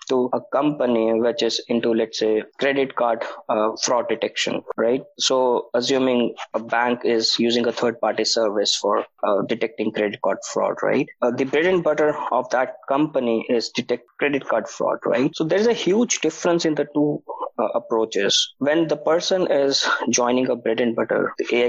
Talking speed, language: 185 wpm, English